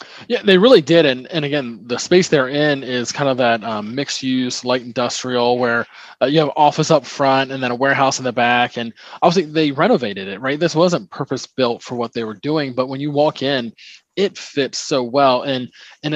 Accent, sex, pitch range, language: American, male, 125-160 Hz, English